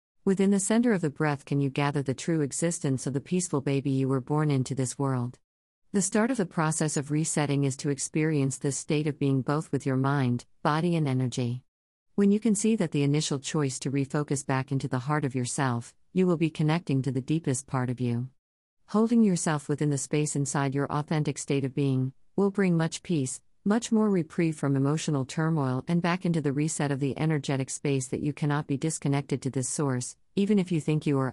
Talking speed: 215 wpm